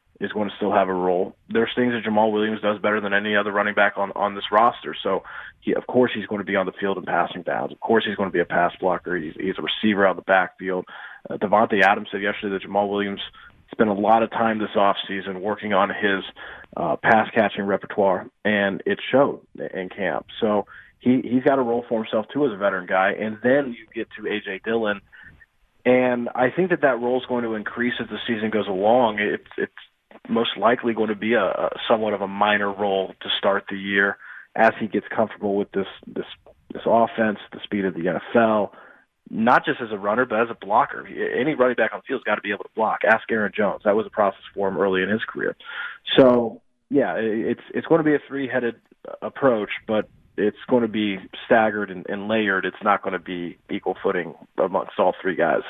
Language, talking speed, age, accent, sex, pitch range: English, 225 wpm, 30-49, American, male, 100-115 Hz